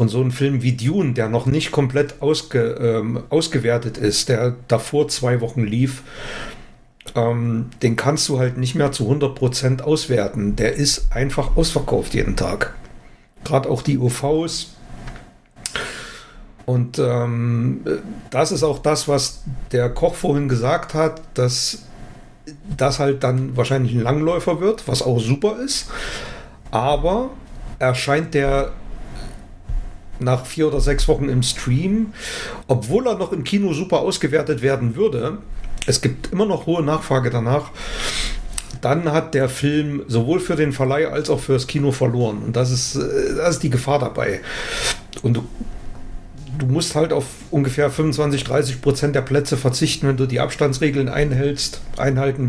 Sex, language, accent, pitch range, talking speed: male, German, German, 125-150 Hz, 145 wpm